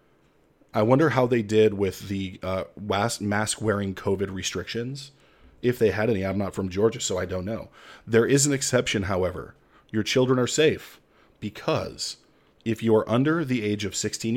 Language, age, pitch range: English, 30-49, 95-115 Hz